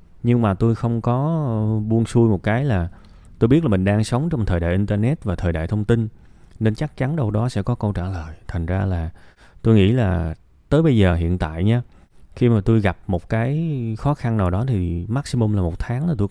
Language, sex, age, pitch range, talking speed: Vietnamese, male, 20-39, 90-125 Hz, 235 wpm